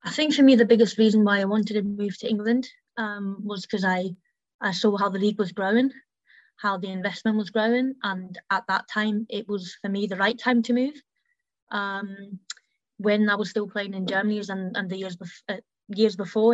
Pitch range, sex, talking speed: 195-225 Hz, female, 205 wpm